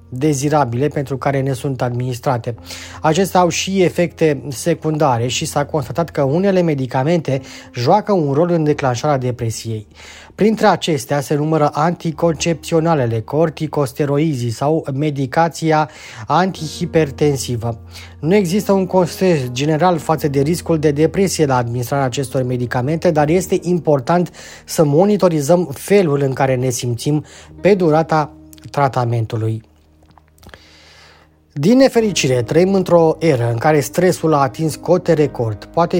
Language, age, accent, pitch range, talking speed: Romanian, 20-39, native, 130-170 Hz, 120 wpm